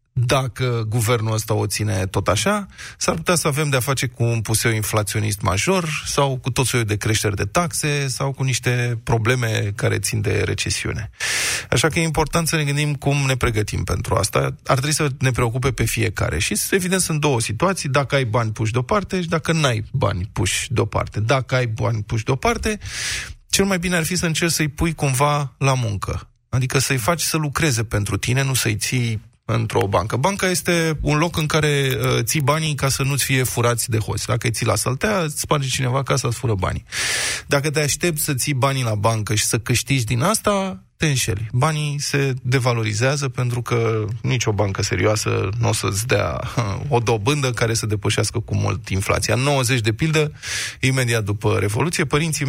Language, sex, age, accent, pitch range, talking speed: Romanian, male, 20-39, native, 110-150 Hz, 190 wpm